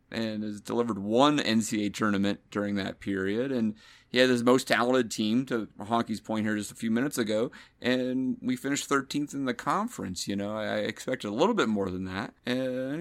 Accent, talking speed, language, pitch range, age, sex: American, 200 wpm, English, 105-140 Hz, 30-49, male